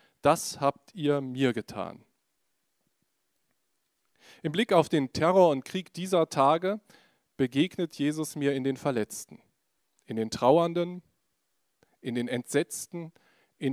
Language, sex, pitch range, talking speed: German, male, 130-170 Hz, 120 wpm